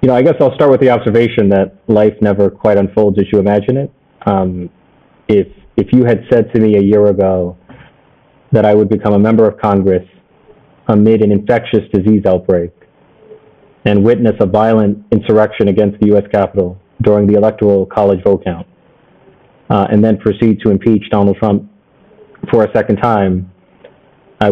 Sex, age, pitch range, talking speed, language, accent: male, 30-49, 100-115 Hz, 170 wpm, English, American